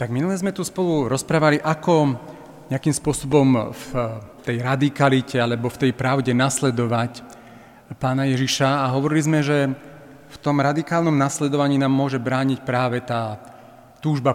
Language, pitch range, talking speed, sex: Slovak, 120-140 Hz, 140 wpm, male